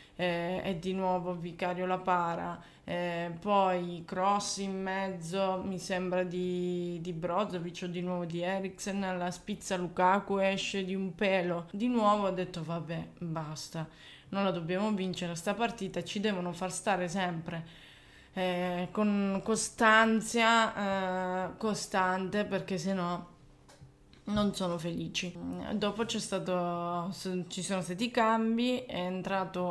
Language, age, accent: Italian, 20-39, native